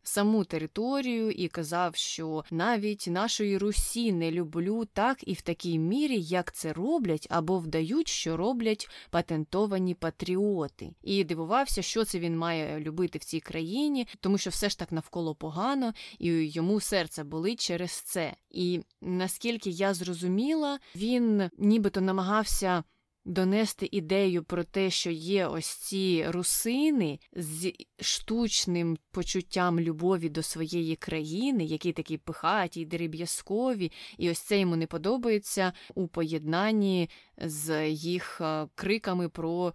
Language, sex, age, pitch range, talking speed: Ukrainian, female, 20-39, 165-210 Hz, 130 wpm